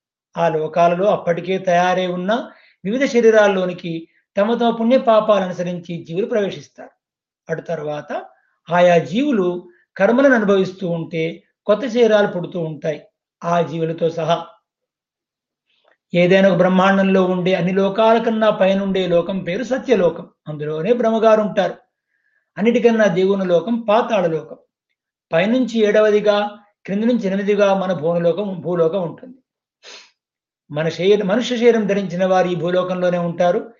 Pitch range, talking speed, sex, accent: 170-215 Hz, 110 wpm, male, native